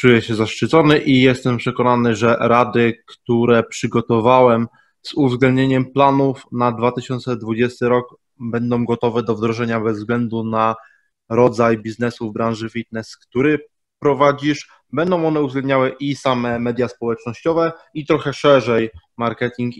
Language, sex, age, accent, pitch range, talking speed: Polish, male, 20-39, native, 115-130 Hz, 125 wpm